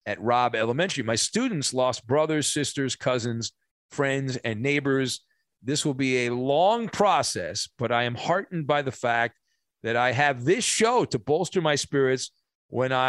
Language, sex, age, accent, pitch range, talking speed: English, male, 40-59, American, 115-140 Hz, 160 wpm